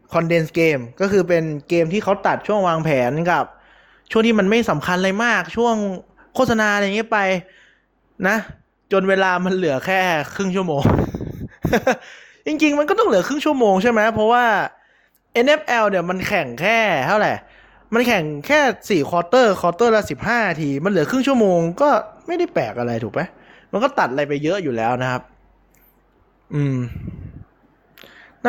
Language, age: Thai, 20-39